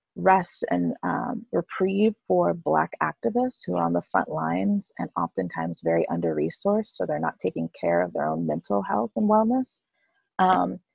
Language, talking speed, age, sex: English, 165 wpm, 30-49, female